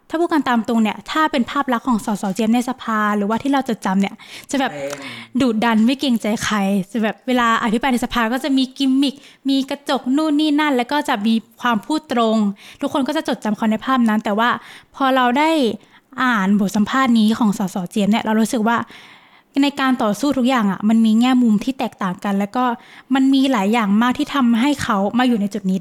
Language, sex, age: Thai, female, 10-29